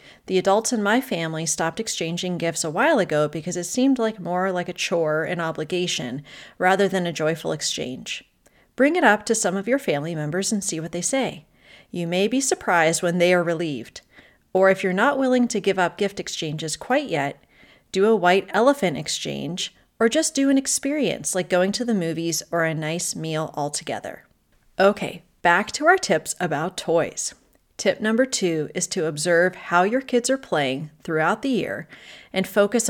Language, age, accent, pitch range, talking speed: English, 30-49, American, 165-220 Hz, 190 wpm